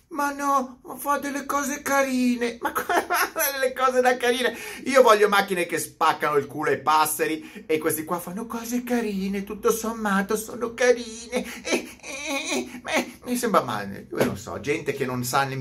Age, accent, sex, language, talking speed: 30-49, native, male, Italian, 180 wpm